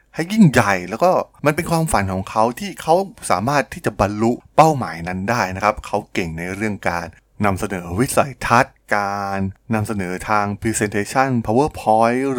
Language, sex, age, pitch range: Thai, male, 20-39, 95-125 Hz